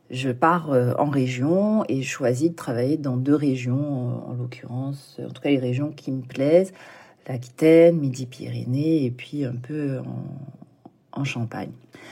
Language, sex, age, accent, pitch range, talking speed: French, female, 40-59, French, 125-150 Hz, 150 wpm